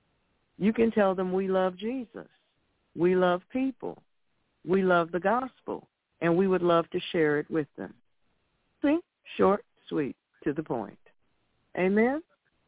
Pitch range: 155-195 Hz